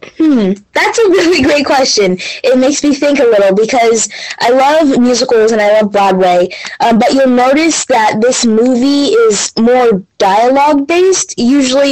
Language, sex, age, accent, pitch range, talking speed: English, female, 10-29, American, 195-255 Hz, 155 wpm